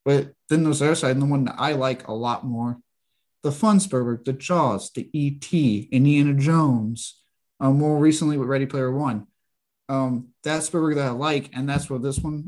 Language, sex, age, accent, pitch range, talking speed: English, male, 20-39, American, 130-150 Hz, 205 wpm